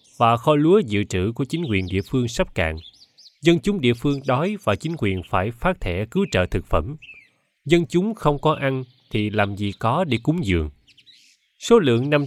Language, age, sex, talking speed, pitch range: Vietnamese, 20-39, male, 205 wpm, 95-140 Hz